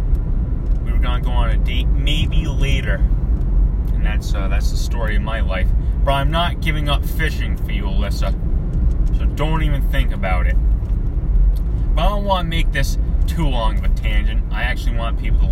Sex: male